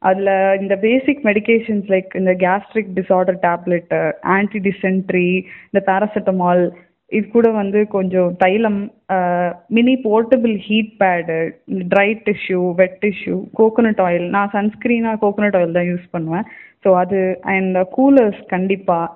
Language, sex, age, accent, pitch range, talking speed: Tamil, female, 20-39, native, 185-210 Hz, 140 wpm